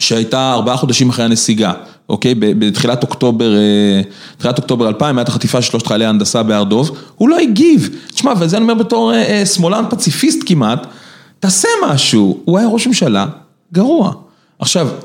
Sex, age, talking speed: male, 30-49, 140 wpm